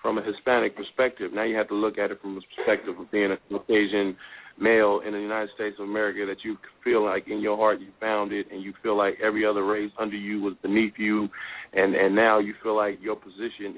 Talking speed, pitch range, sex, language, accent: 240 wpm, 100-110 Hz, male, English, American